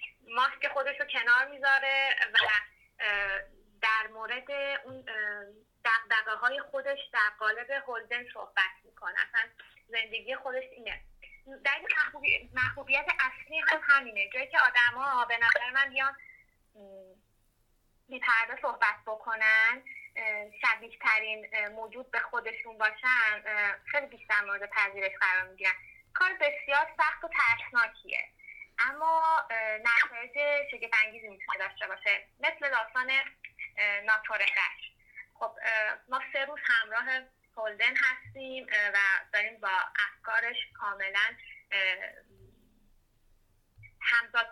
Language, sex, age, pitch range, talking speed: Persian, female, 20-39, 215-280 Hz, 100 wpm